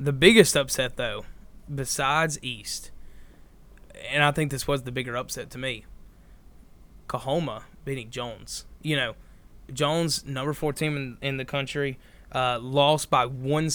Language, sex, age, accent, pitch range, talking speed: English, male, 20-39, American, 130-160 Hz, 145 wpm